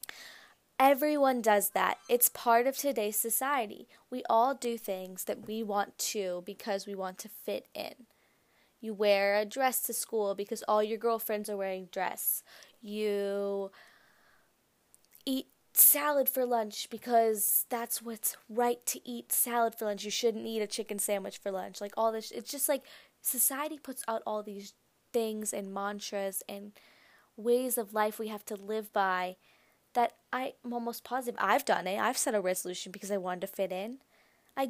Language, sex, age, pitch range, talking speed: English, female, 10-29, 205-245 Hz, 170 wpm